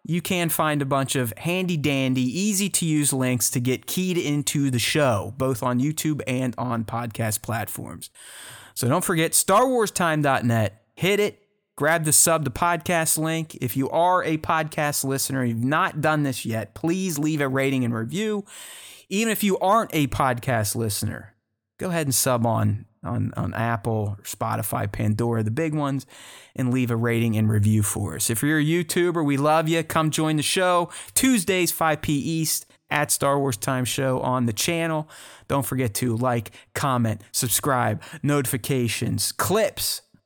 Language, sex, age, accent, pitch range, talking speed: English, male, 30-49, American, 120-165 Hz, 165 wpm